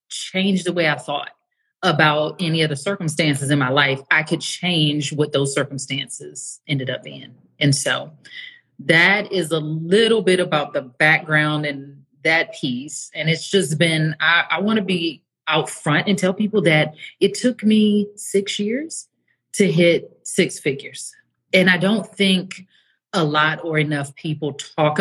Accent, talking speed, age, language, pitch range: American, 165 wpm, 30-49, English, 150-190 Hz